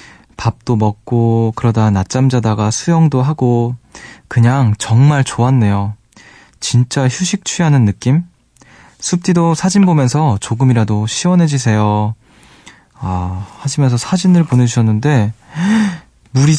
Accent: native